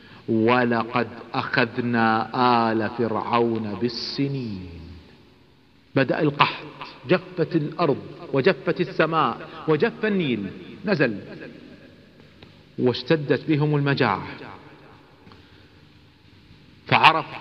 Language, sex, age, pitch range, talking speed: Arabic, male, 50-69, 120-160 Hz, 60 wpm